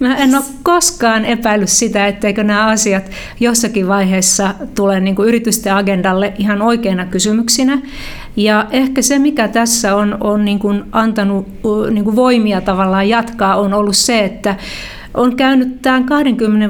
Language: Finnish